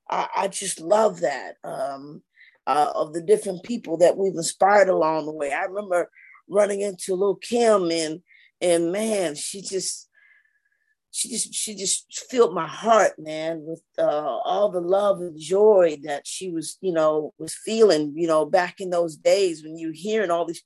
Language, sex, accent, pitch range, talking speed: English, female, American, 150-195 Hz, 175 wpm